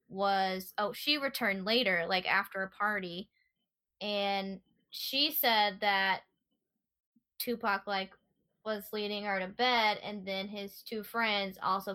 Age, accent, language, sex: 10-29, American, English, female